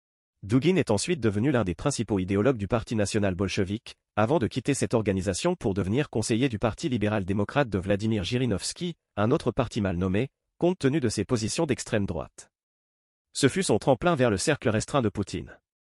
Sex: male